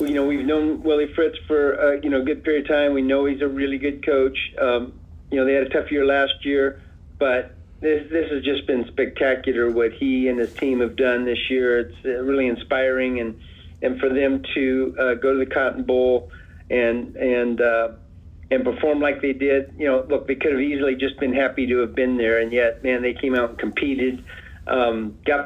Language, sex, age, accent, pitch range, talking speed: English, male, 50-69, American, 120-135 Hz, 220 wpm